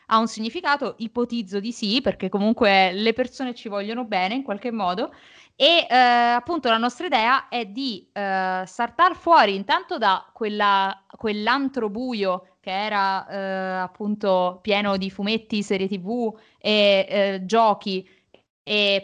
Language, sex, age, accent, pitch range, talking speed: Italian, female, 20-39, native, 195-240 Hz, 140 wpm